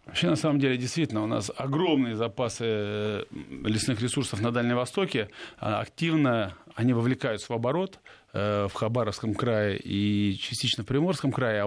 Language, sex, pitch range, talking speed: Russian, male, 110-145 Hz, 150 wpm